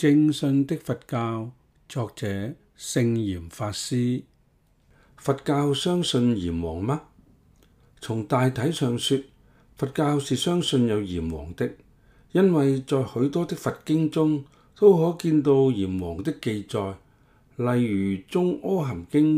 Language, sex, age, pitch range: Chinese, male, 50-69, 105-150 Hz